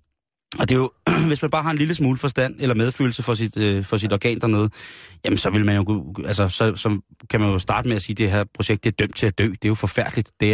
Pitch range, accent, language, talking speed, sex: 105-130 Hz, native, Danish, 285 wpm, male